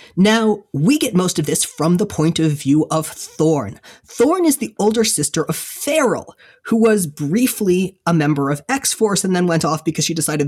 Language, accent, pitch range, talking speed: English, American, 155-210 Hz, 195 wpm